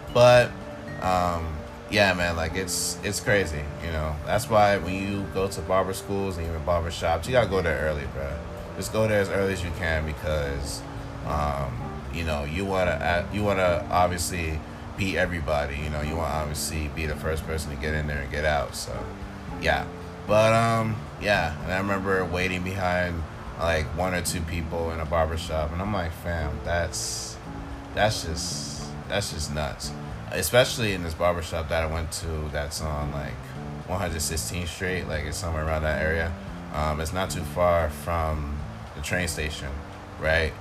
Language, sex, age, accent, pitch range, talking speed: English, male, 20-39, American, 75-95 Hz, 180 wpm